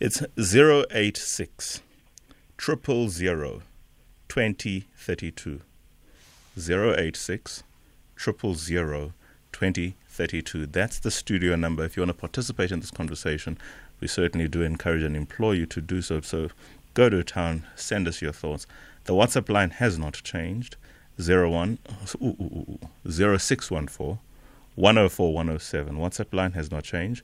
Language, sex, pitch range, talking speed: English, male, 80-100 Hz, 95 wpm